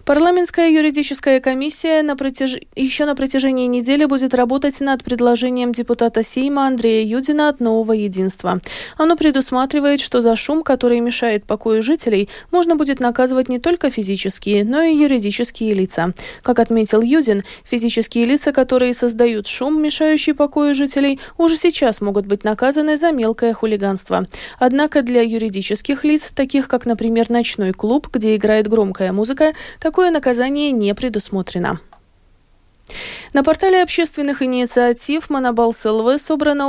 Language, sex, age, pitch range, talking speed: Russian, female, 20-39, 225-290 Hz, 130 wpm